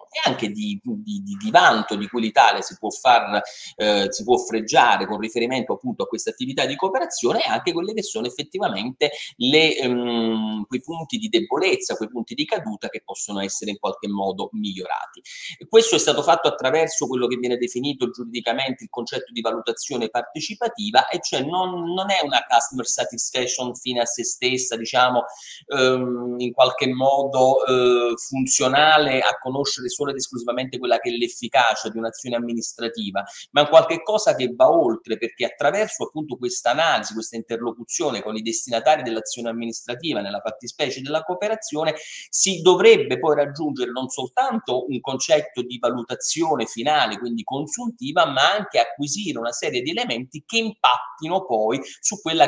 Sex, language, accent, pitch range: male, Italian, native, 120-190 Hz